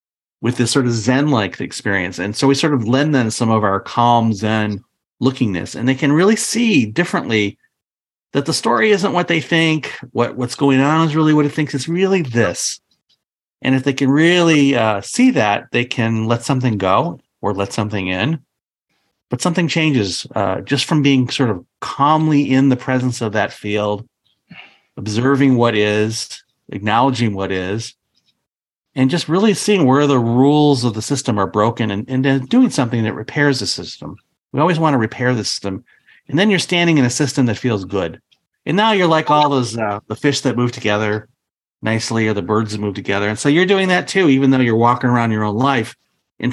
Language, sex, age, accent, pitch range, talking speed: Finnish, male, 40-59, American, 110-145 Hz, 195 wpm